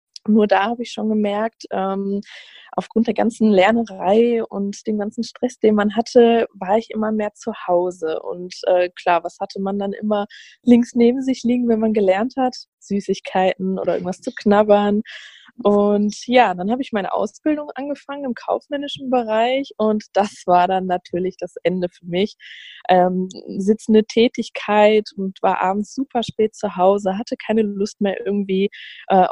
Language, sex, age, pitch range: German, female, 20-39, 190-230 Hz